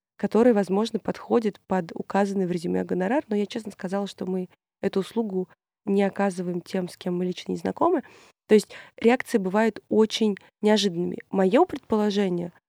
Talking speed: 155 wpm